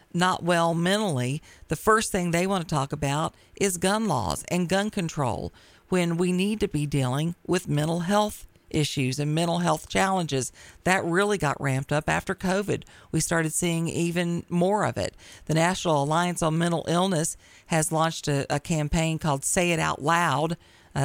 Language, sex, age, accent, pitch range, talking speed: English, female, 50-69, American, 140-180 Hz, 175 wpm